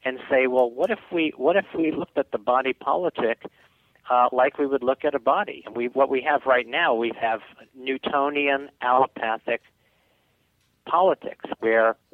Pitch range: 110-130 Hz